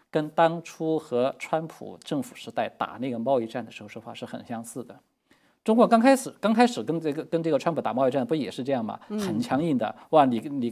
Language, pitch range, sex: Chinese, 120-200 Hz, male